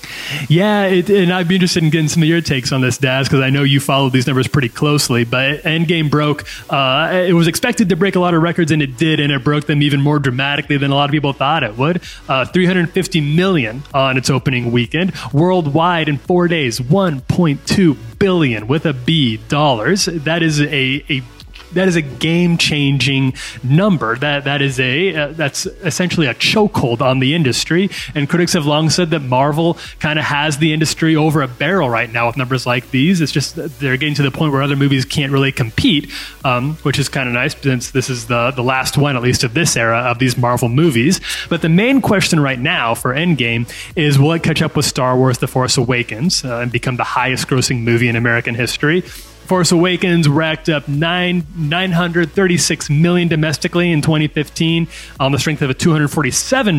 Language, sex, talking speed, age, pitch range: English, male, 205 wpm, 20-39, 130-165 Hz